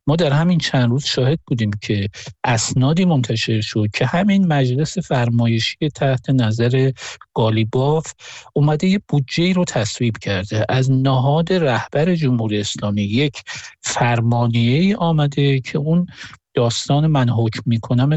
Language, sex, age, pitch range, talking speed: Persian, male, 50-69, 115-150 Hz, 125 wpm